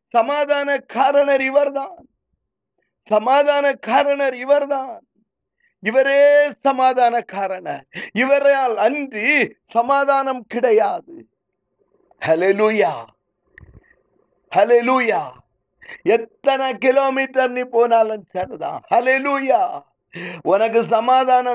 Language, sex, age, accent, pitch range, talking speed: Tamil, male, 50-69, native, 235-285 Hz, 55 wpm